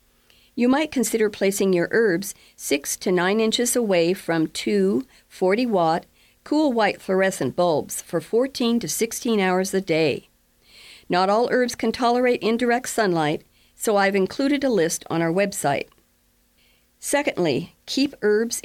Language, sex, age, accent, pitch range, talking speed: English, female, 50-69, American, 170-230 Hz, 140 wpm